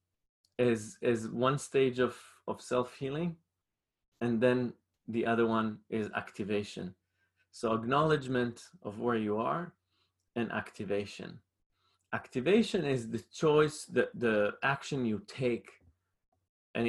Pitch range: 110-135 Hz